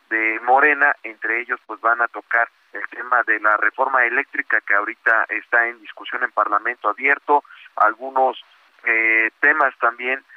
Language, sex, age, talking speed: Spanish, male, 40-59, 150 wpm